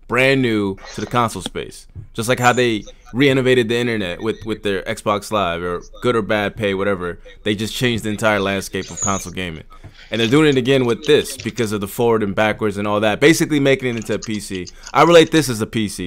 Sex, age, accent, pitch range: male, 20-39, American, 100-125 Hz